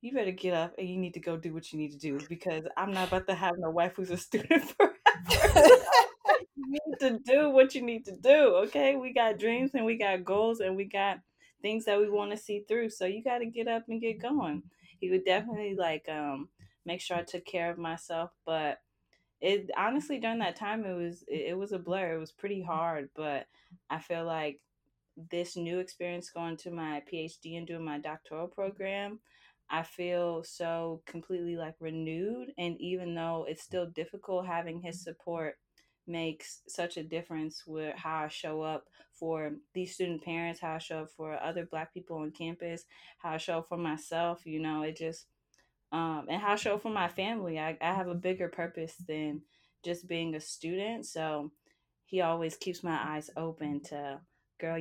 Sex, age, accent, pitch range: female, 20-39, American, 160-195 Hz